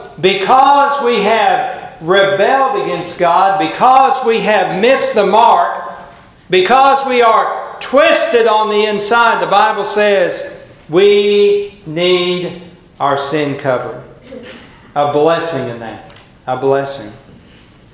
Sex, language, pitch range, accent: male, English, 155-225 Hz, American